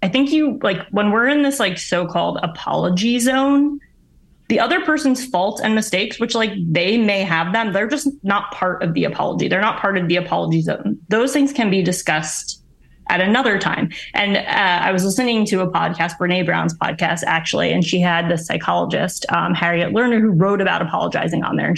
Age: 20-39